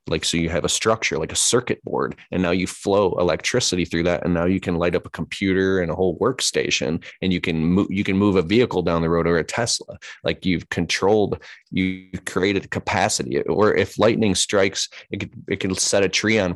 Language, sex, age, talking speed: English, male, 20-39, 225 wpm